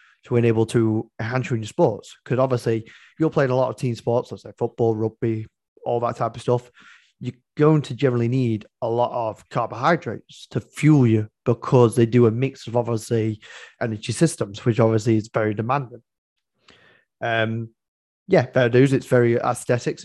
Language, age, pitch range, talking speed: English, 20-39, 115-130 Hz, 175 wpm